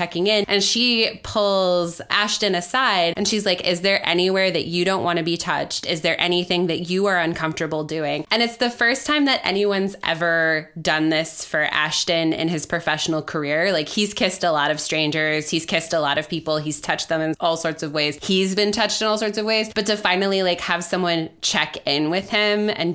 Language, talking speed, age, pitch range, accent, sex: English, 220 wpm, 20-39, 160-200 Hz, American, female